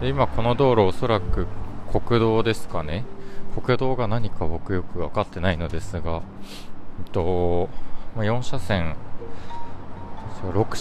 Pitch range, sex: 95-120 Hz, male